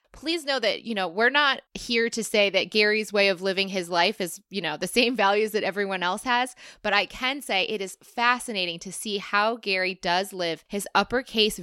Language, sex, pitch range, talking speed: English, female, 180-220 Hz, 215 wpm